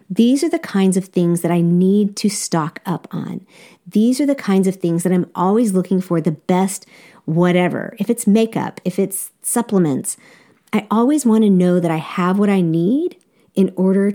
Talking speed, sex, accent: 195 wpm, female, American